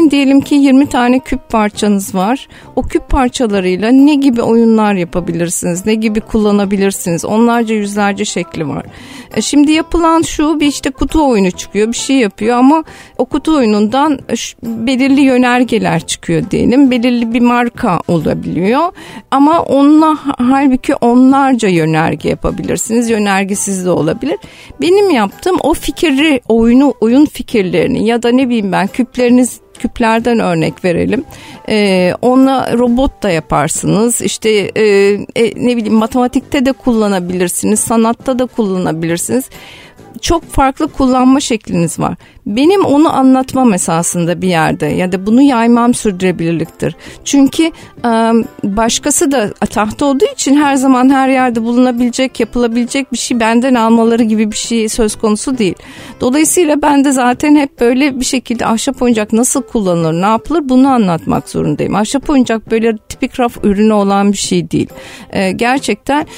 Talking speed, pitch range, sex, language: 135 wpm, 215-275 Hz, female, Turkish